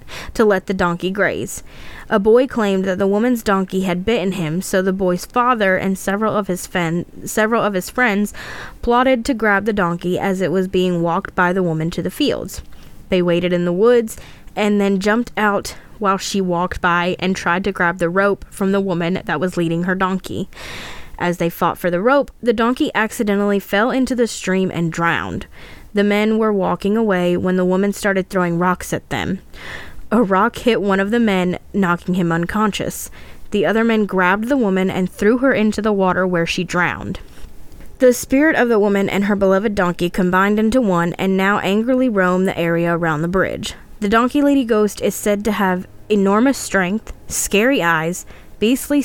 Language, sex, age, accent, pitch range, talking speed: English, female, 10-29, American, 180-215 Hz, 190 wpm